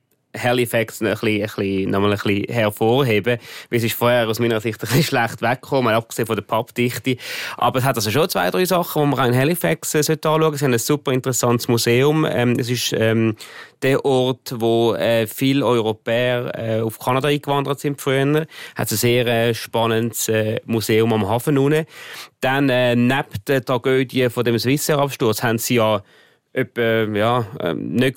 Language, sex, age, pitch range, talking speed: German, male, 30-49, 115-135 Hz, 175 wpm